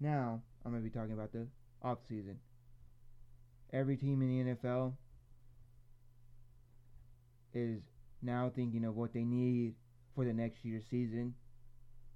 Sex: male